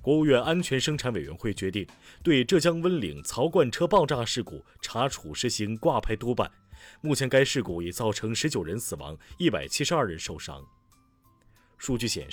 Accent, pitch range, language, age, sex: native, 100-130 Hz, Chinese, 30-49, male